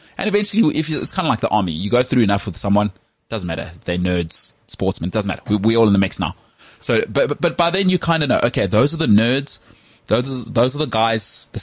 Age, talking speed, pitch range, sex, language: 20-39, 265 wpm, 100-125 Hz, male, English